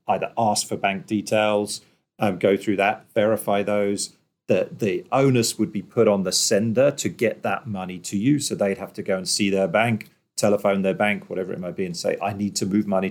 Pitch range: 100-120 Hz